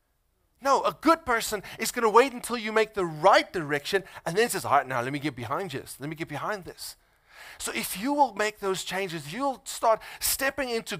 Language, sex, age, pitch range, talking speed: English, male, 30-49, 155-220 Hz, 225 wpm